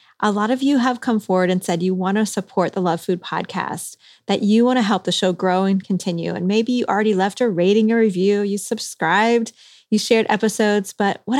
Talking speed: 225 wpm